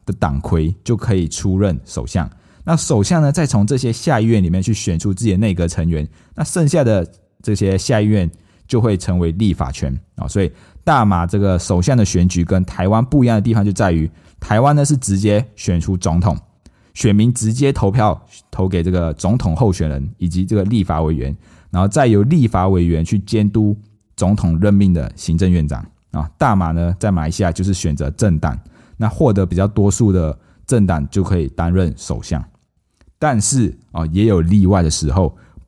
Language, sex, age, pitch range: Chinese, male, 20-39, 85-110 Hz